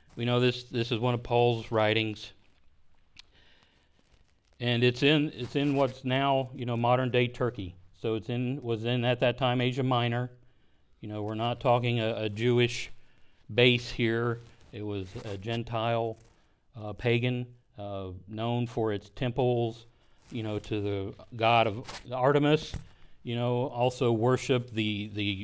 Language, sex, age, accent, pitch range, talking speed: English, male, 40-59, American, 110-130 Hz, 155 wpm